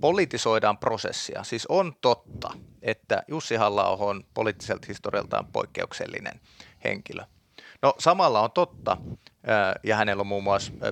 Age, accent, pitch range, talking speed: 30-49, native, 105-130 Hz, 120 wpm